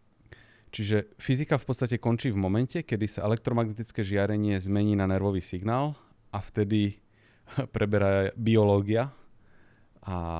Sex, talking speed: male, 115 wpm